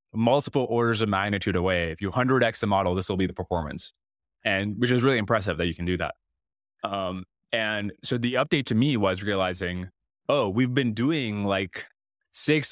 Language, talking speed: English, 190 wpm